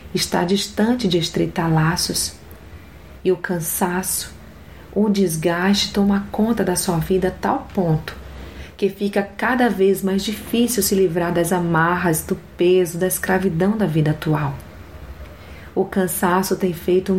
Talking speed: 135 wpm